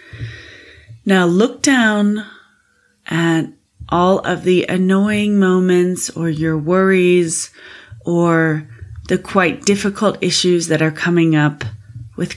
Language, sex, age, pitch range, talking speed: English, female, 30-49, 145-180 Hz, 105 wpm